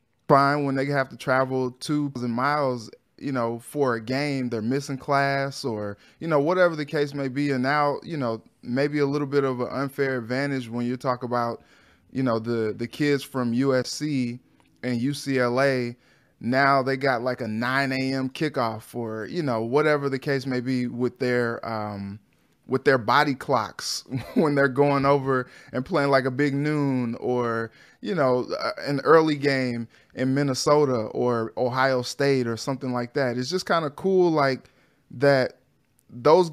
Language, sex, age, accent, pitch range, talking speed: English, male, 20-39, American, 125-145 Hz, 175 wpm